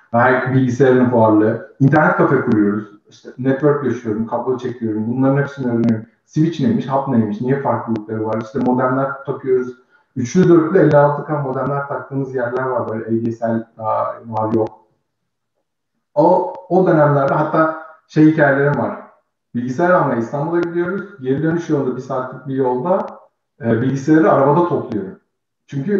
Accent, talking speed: native, 140 wpm